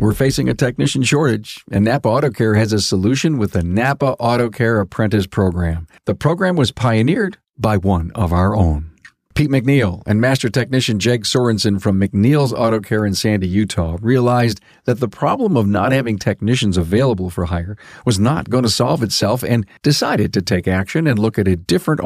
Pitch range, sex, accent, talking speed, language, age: 100-125 Hz, male, American, 190 wpm, English, 50-69